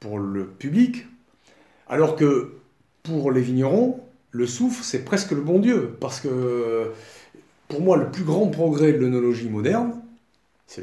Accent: French